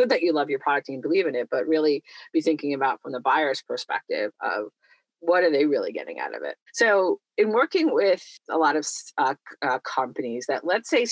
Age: 40-59